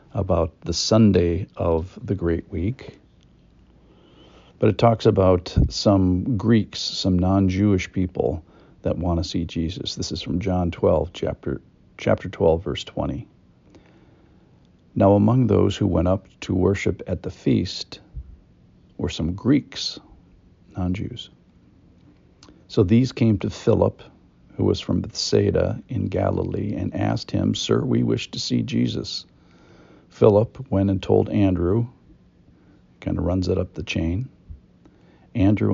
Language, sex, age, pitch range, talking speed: English, male, 50-69, 85-105 Hz, 135 wpm